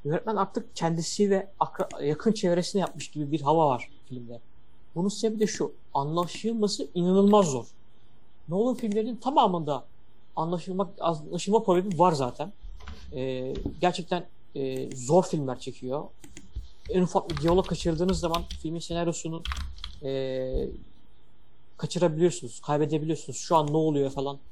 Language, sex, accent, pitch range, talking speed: Turkish, male, native, 135-190 Hz, 120 wpm